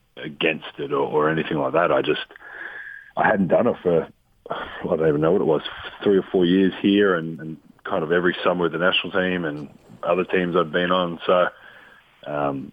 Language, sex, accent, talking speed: English, male, Australian, 205 wpm